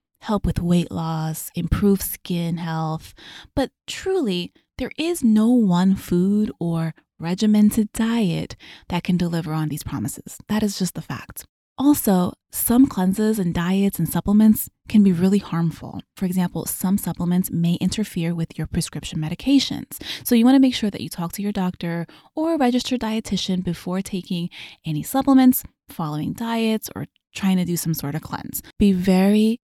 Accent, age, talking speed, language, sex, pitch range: American, 20-39, 165 wpm, English, female, 165-210 Hz